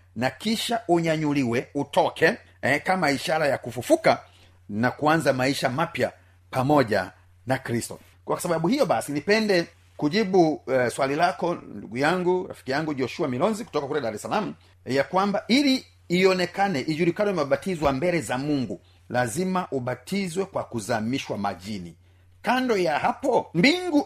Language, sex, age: Swahili, male, 40-59